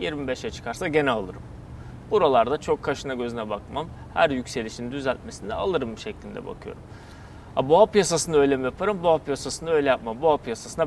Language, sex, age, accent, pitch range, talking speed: Turkish, male, 30-49, native, 120-160 Hz, 150 wpm